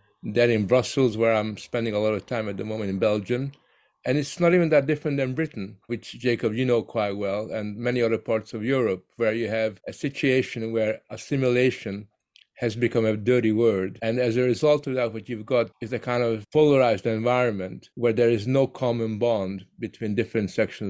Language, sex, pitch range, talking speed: English, male, 110-130 Hz, 205 wpm